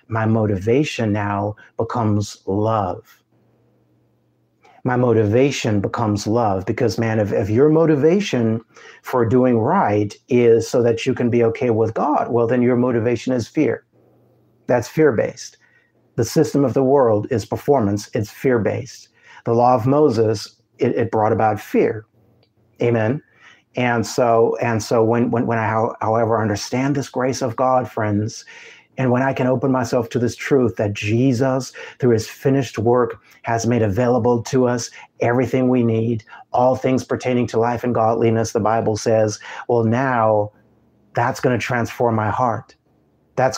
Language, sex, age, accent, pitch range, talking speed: English, male, 50-69, American, 110-125 Hz, 155 wpm